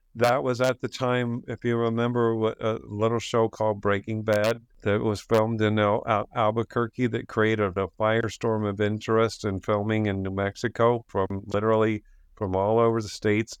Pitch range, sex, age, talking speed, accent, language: 100-115 Hz, male, 50-69, 175 wpm, American, English